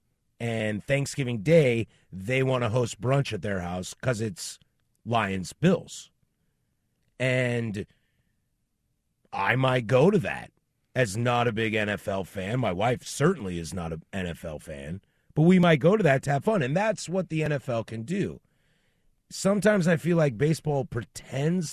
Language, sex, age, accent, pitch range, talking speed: English, male, 30-49, American, 115-160 Hz, 155 wpm